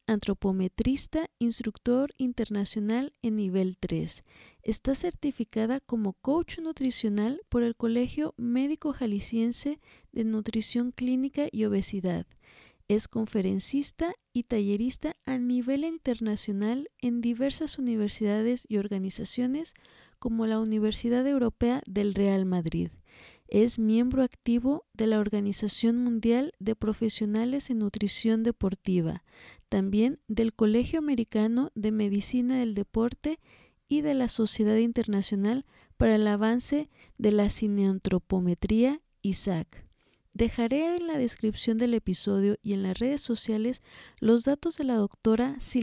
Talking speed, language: 115 wpm, Spanish